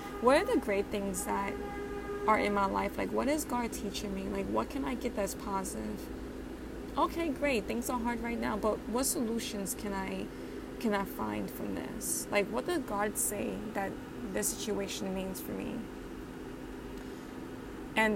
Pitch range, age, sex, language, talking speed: 200-235 Hz, 20-39, female, English, 170 wpm